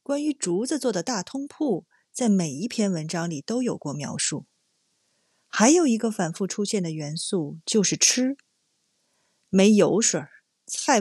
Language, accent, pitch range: Chinese, native, 175-260 Hz